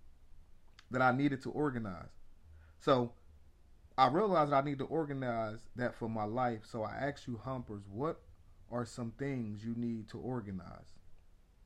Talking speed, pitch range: 155 wpm, 85-135 Hz